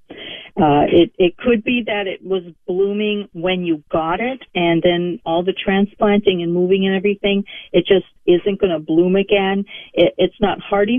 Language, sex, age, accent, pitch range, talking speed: English, female, 50-69, American, 170-205 Hz, 175 wpm